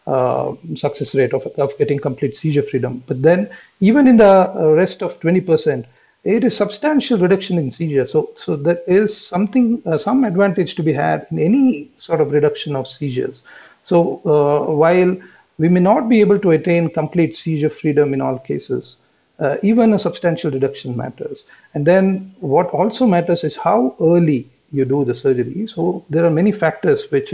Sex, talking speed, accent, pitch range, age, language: male, 180 wpm, Indian, 140-195 Hz, 50-69, English